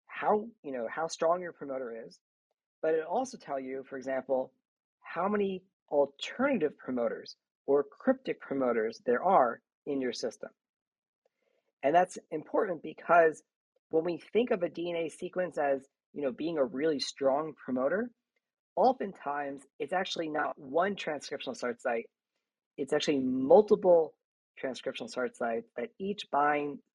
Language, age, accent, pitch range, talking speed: English, 40-59, American, 135-185 Hz, 140 wpm